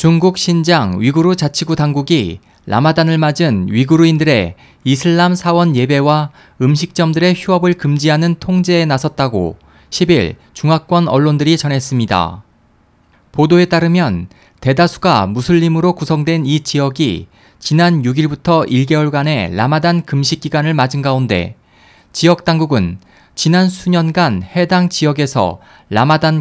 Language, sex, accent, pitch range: Korean, male, native, 125-170 Hz